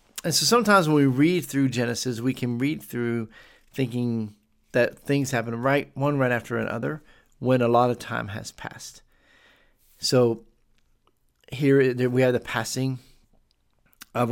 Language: English